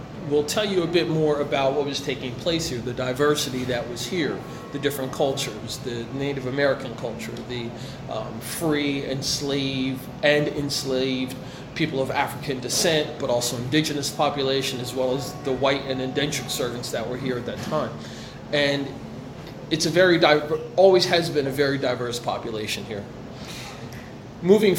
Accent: American